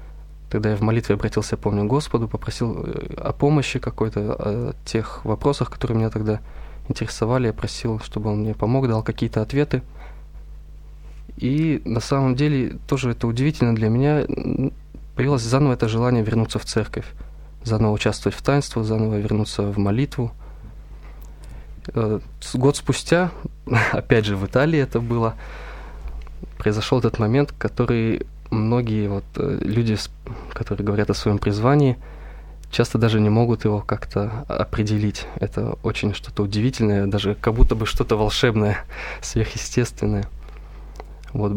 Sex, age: male, 20-39